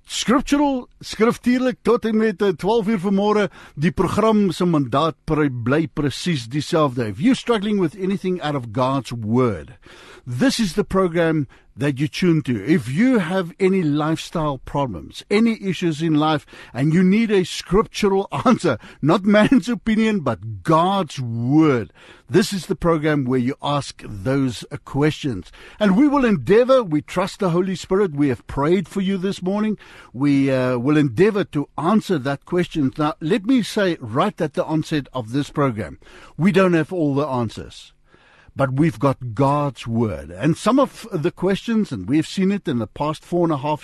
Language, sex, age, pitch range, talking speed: English, male, 60-79, 140-195 Hz, 170 wpm